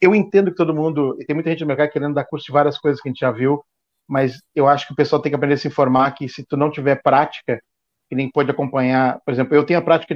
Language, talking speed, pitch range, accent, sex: Portuguese, 295 wpm, 140-160 Hz, Brazilian, male